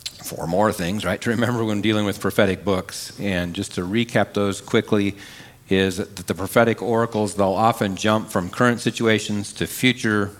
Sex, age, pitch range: male, 50-69, 95-115 Hz